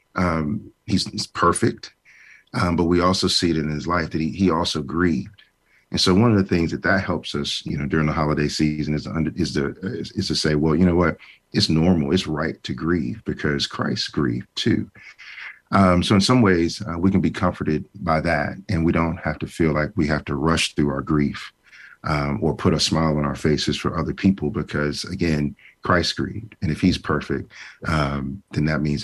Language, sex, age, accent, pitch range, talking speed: English, male, 40-59, American, 75-90 Hz, 215 wpm